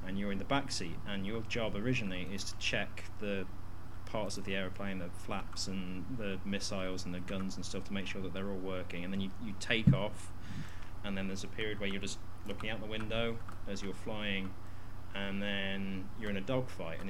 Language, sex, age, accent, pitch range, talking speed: English, male, 20-39, British, 95-105 Hz, 220 wpm